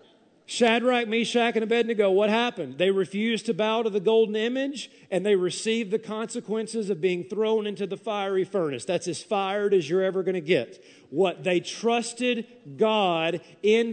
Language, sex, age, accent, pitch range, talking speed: English, male, 40-59, American, 150-205 Hz, 170 wpm